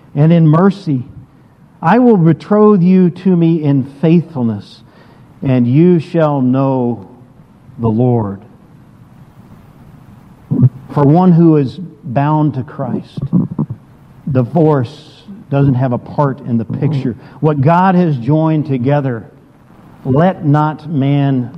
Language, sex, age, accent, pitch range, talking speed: English, male, 50-69, American, 135-185 Hz, 110 wpm